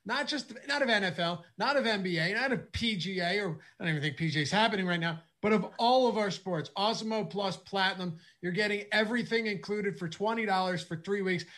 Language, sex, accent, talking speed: English, male, American, 200 wpm